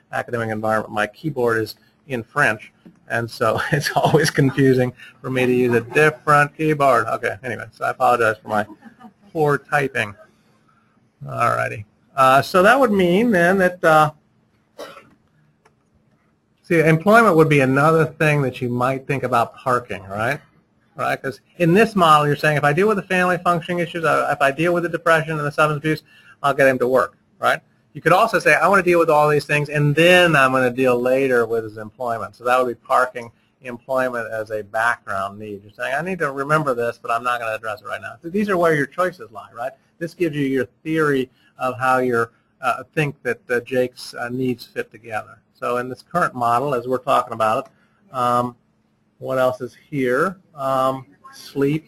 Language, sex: English, male